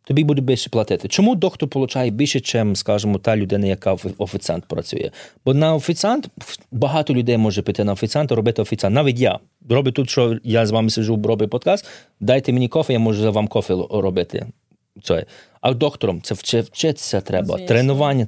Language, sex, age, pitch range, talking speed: Ukrainian, male, 30-49, 110-145 Hz, 170 wpm